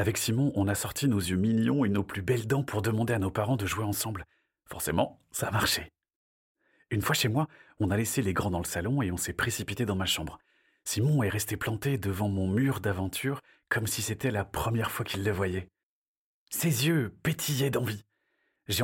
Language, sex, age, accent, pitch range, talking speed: French, male, 40-59, French, 100-125 Hz, 210 wpm